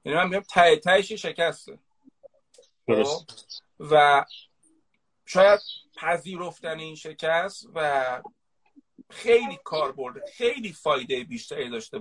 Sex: male